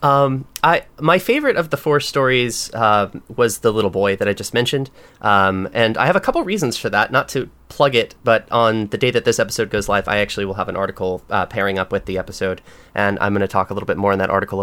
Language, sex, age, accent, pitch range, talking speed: English, male, 30-49, American, 100-130 Hz, 260 wpm